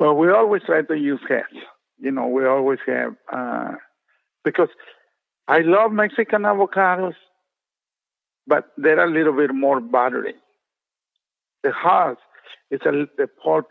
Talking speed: 130 wpm